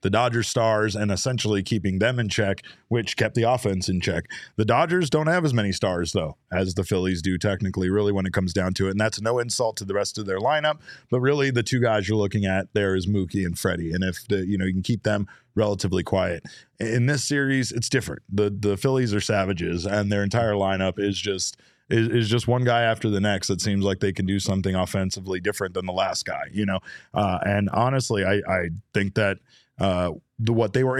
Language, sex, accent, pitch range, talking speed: English, male, American, 95-115 Hz, 230 wpm